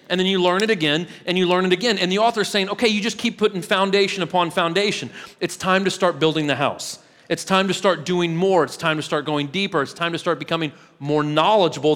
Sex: male